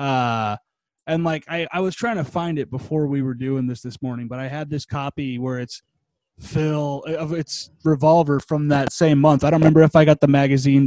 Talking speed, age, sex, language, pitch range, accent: 220 wpm, 20-39, male, English, 125-155 Hz, American